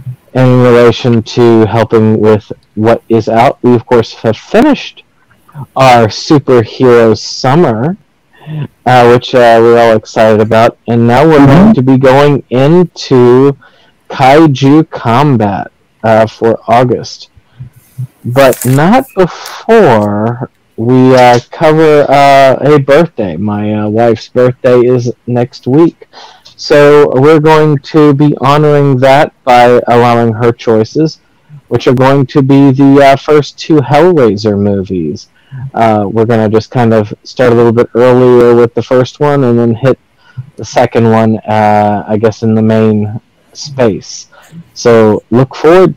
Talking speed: 140 wpm